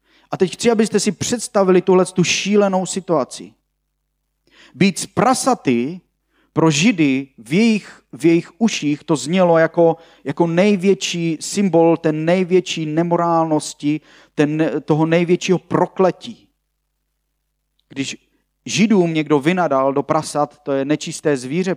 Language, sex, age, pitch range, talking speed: Slovak, male, 40-59, 155-205 Hz, 120 wpm